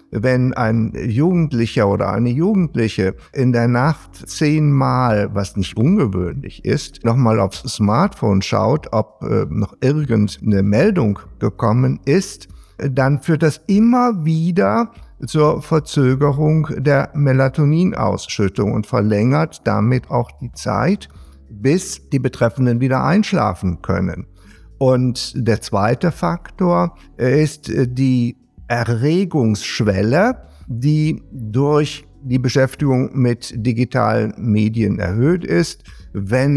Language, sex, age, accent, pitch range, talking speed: German, male, 50-69, German, 105-145 Hz, 100 wpm